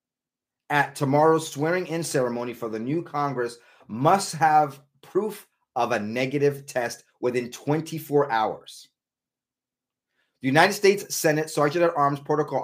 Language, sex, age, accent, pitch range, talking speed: English, male, 30-49, American, 115-145 Hz, 115 wpm